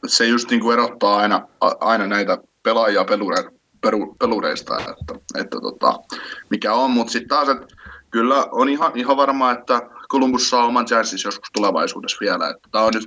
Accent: native